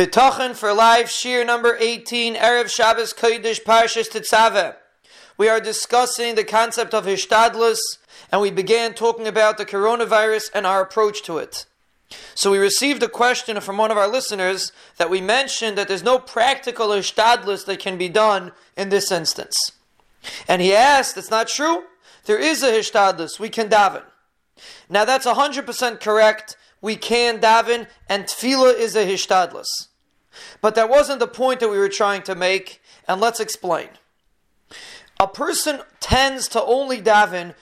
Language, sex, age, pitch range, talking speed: English, male, 30-49, 200-245 Hz, 155 wpm